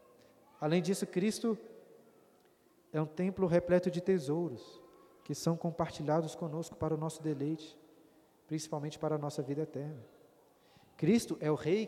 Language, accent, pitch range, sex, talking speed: Portuguese, Brazilian, 150-180 Hz, male, 135 wpm